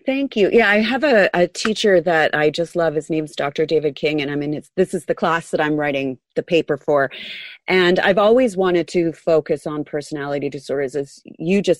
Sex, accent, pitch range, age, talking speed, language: female, American, 140-175 Hz, 30-49, 220 wpm, English